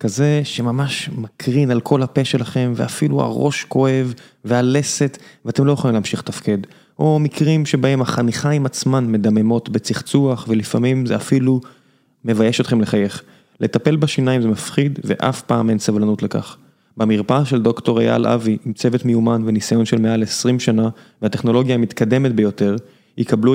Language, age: Hebrew, 20-39